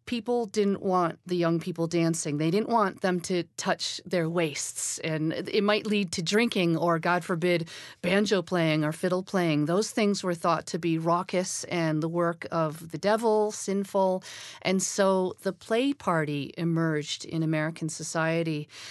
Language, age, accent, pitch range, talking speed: English, 40-59, American, 155-185 Hz, 165 wpm